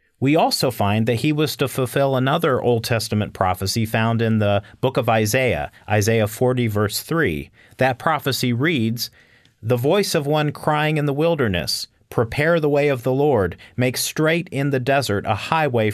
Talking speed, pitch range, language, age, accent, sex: 175 wpm, 110-145 Hz, English, 40-59, American, male